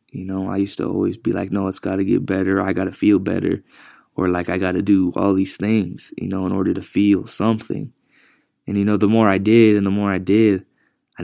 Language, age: English, 20-39